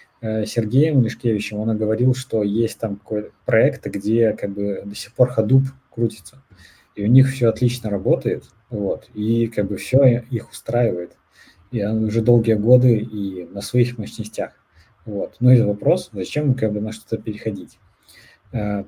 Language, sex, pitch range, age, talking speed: Russian, male, 105-125 Hz, 20-39, 160 wpm